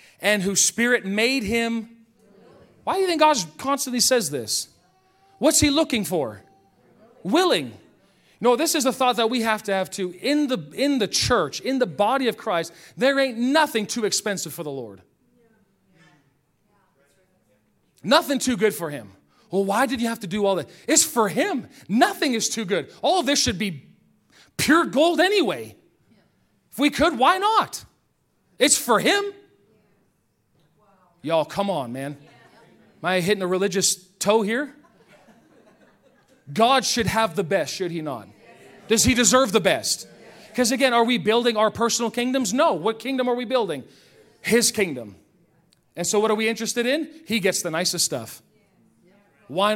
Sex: male